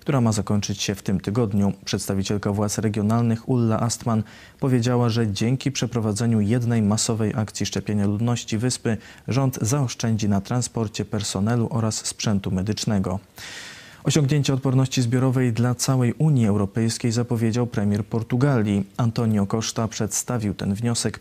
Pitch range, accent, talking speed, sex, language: 105-125 Hz, native, 125 wpm, male, Polish